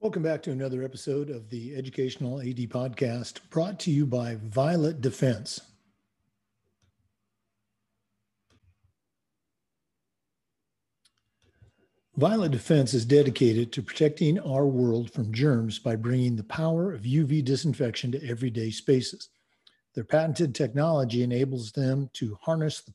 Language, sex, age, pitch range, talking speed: English, male, 50-69, 115-155 Hz, 115 wpm